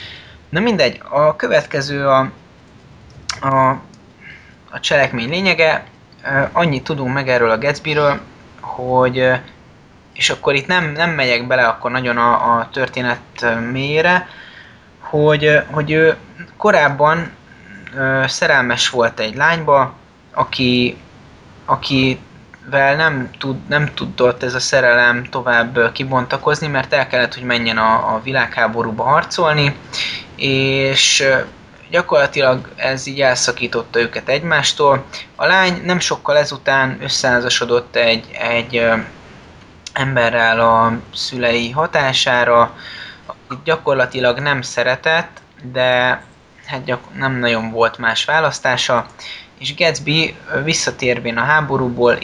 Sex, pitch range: male, 120-145 Hz